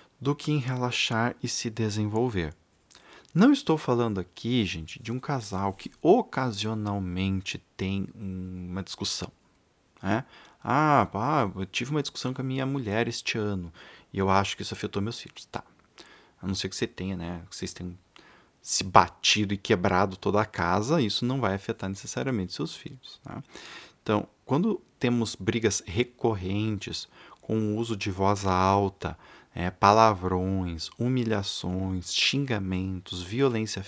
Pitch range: 95-120 Hz